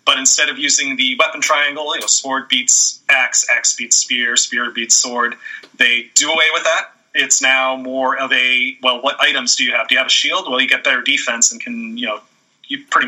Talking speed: 230 wpm